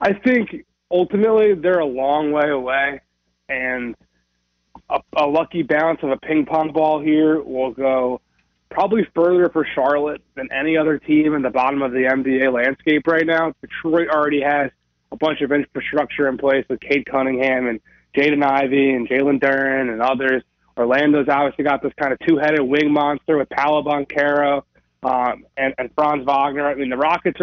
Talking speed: 170 wpm